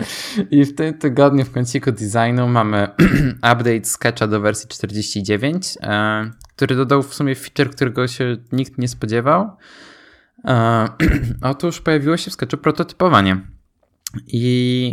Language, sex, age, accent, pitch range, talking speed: Polish, male, 20-39, native, 115-135 Hz, 120 wpm